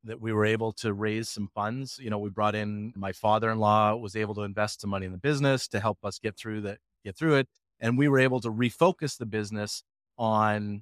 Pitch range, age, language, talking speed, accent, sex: 105-130 Hz, 30-49, English, 235 wpm, American, male